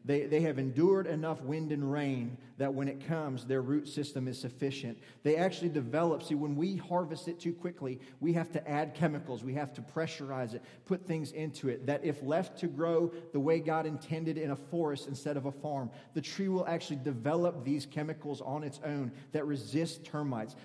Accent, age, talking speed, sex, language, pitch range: American, 30-49, 205 wpm, male, English, 145-165 Hz